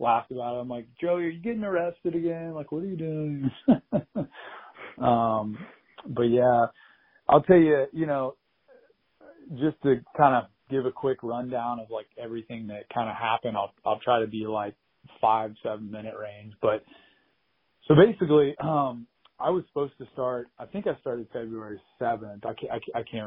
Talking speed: 175 wpm